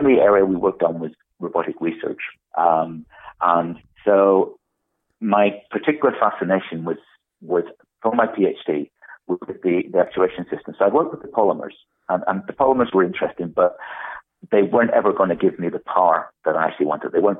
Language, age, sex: English, 50-69, male